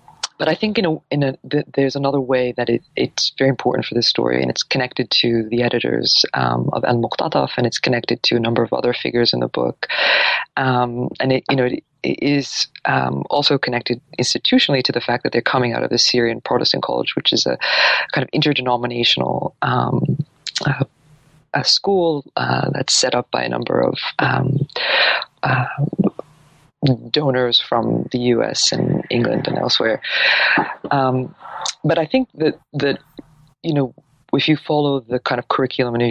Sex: female